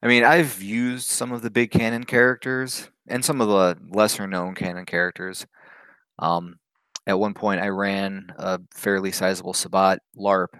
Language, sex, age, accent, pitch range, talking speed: English, male, 20-39, American, 95-110 Hz, 160 wpm